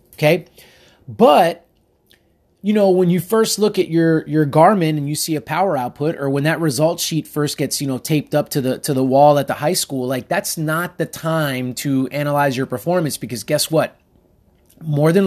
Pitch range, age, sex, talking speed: 135-170 Hz, 20-39, male, 205 wpm